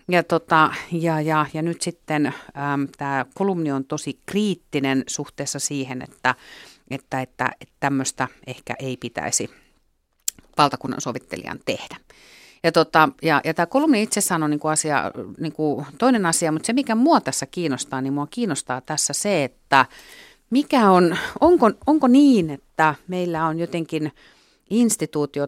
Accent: native